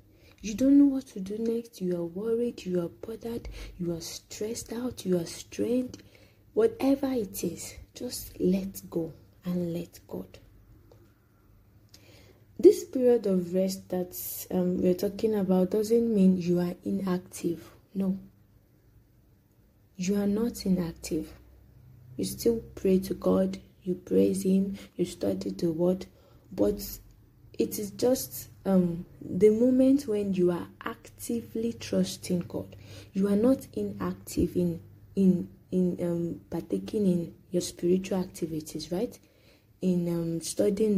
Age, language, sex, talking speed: 20-39, English, female, 130 wpm